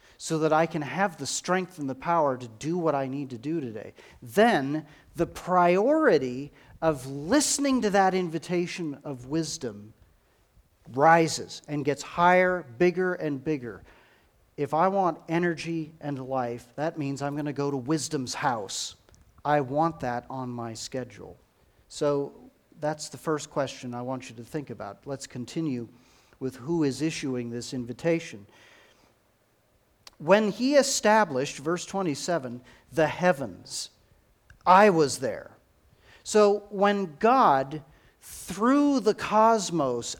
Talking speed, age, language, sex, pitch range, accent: 135 wpm, 40-59, English, male, 130-185 Hz, American